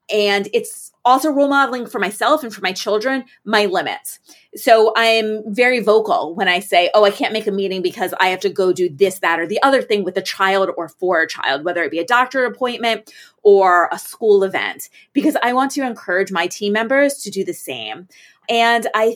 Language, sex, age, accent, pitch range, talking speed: English, female, 30-49, American, 195-265 Hz, 215 wpm